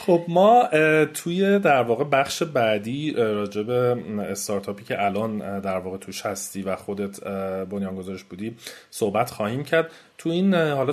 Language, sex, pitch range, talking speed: Persian, male, 105-145 Hz, 145 wpm